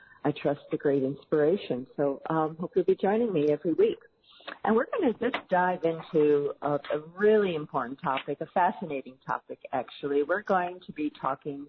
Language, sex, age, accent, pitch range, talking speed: English, female, 50-69, American, 145-180 Hz, 185 wpm